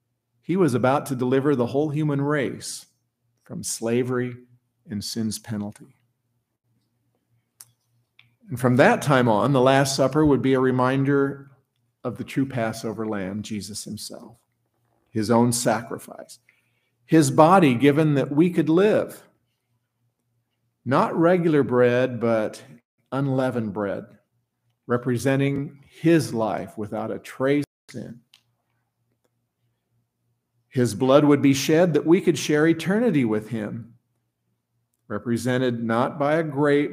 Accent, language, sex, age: American, English, male, 50-69